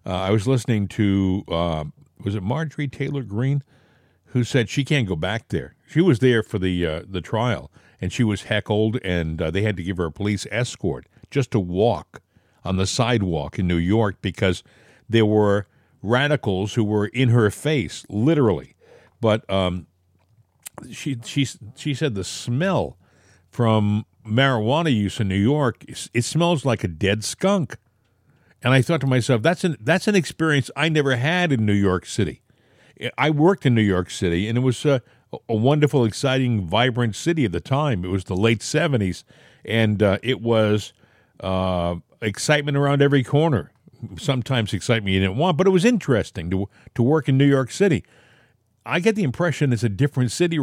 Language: English